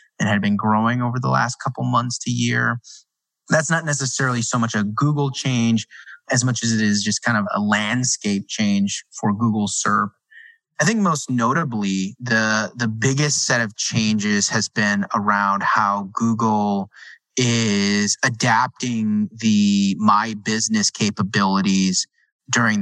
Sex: male